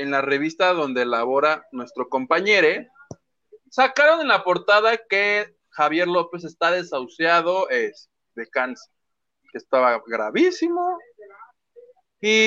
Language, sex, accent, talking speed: Spanish, male, Mexican, 110 wpm